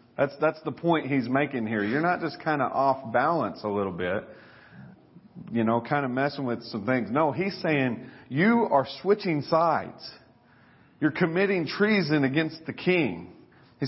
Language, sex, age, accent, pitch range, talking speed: English, male, 40-59, American, 120-165 Hz, 170 wpm